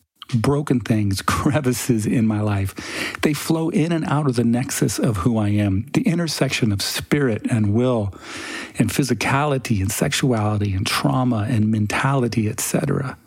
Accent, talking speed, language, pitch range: American, 150 wpm, English, 105-130 Hz